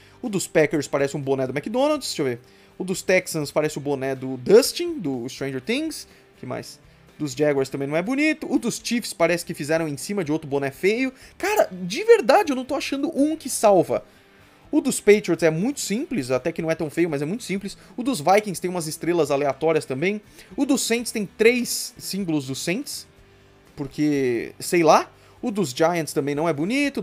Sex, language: male, Portuguese